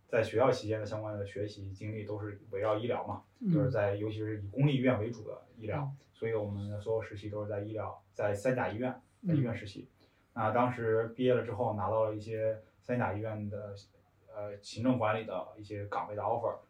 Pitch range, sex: 105-120 Hz, male